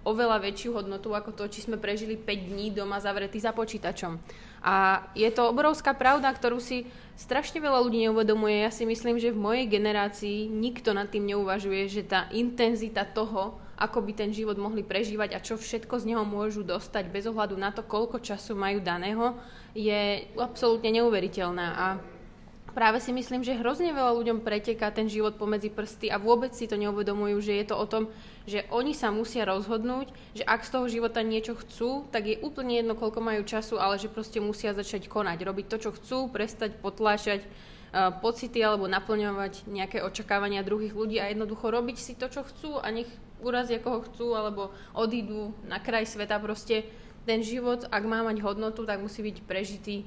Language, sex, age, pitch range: Slovak, female, 20-39, 205-230 Hz